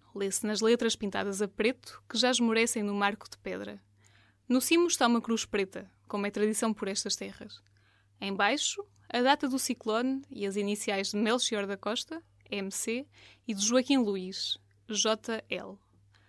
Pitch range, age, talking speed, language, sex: 195-245 Hz, 10-29, 160 wpm, Portuguese, female